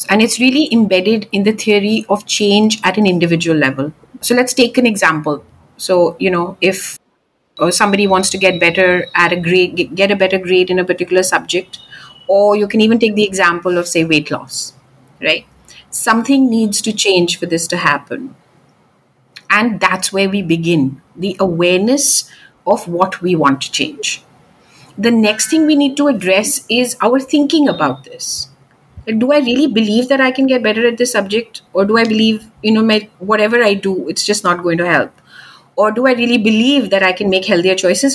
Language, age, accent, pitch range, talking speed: English, 50-69, Indian, 180-240 Hz, 195 wpm